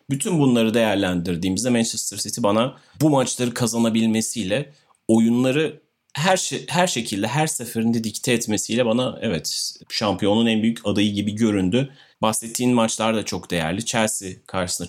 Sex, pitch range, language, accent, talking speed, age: male, 100-125 Hz, Turkish, native, 130 wpm, 30-49